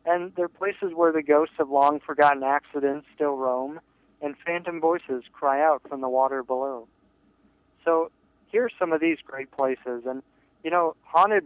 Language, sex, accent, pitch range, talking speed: English, male, American, 135-165 Hz, 175 wpm